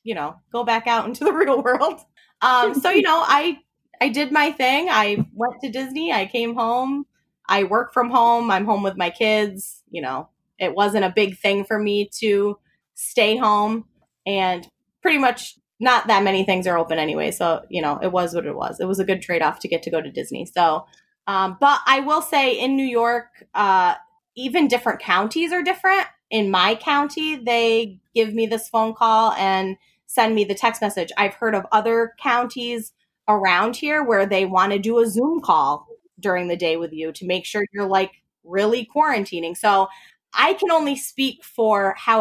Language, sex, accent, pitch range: English, female, American, 195-260 Hz